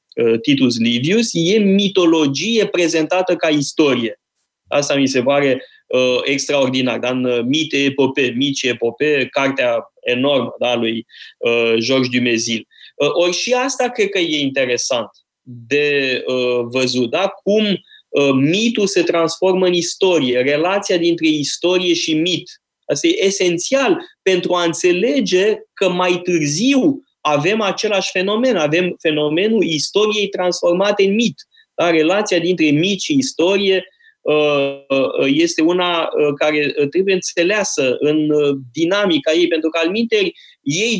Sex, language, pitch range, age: male, Romanian, 145-205 Hz, 20-39